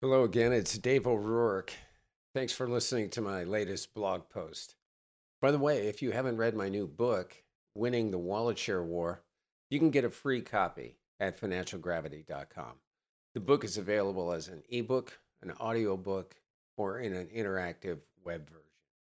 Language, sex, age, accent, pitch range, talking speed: English, male, 50-69, American, 80-115 Hz, 165 wpm